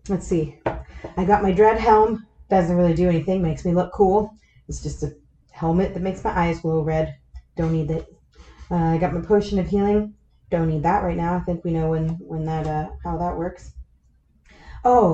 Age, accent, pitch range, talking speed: 30-49, American, 160-190 Hz, 205 wpm